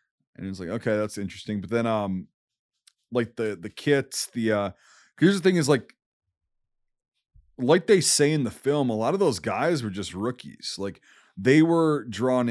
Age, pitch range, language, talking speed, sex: 30-49, 100-125 Hz, English, 185 wpm, male